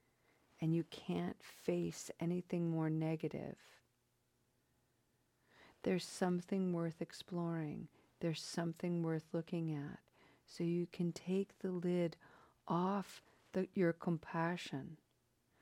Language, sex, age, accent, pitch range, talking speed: English, female, 50-69, American, 160-185 Hz, 95 wpm